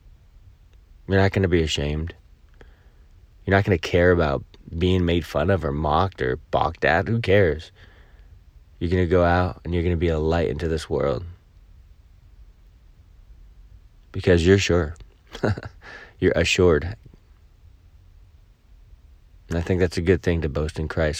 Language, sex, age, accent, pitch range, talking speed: English, male, 20-39, American, 80-95 Hz, 155 wpm